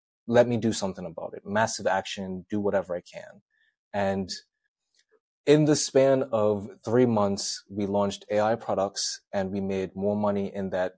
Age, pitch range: 20-39, 95-120 Hz